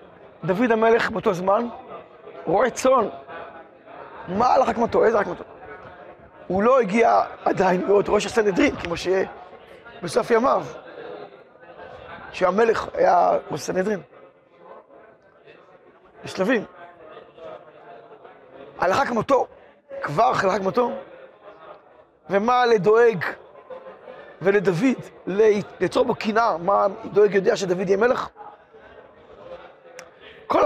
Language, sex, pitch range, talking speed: Hebrew, male, 200-260 Hz, 95 wpm